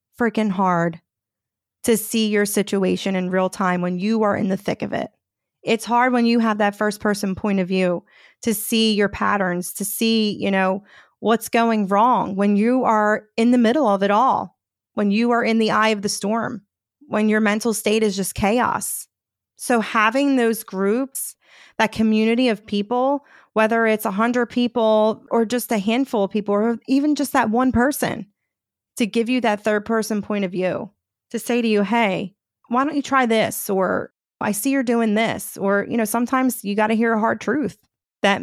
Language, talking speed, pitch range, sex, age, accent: English, 195 wpm, 200-235 Hz, female, 30-49, American